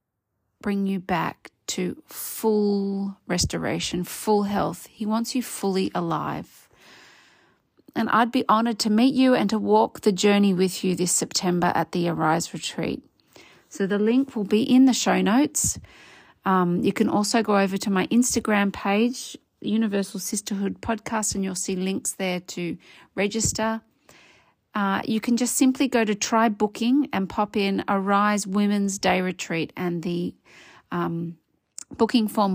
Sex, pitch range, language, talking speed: female, 190-225 Hz, English, 155 wpm